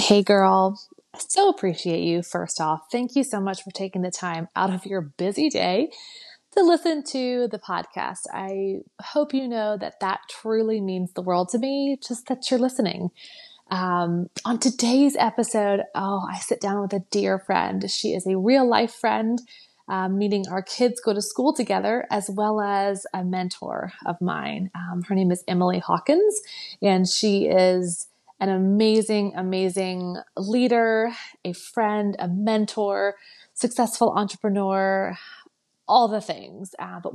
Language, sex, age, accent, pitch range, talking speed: English, female, 30-49, American, 185-225 Hz, 160 wpm